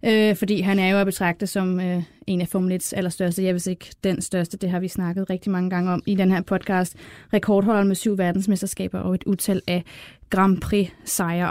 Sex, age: female, 20-39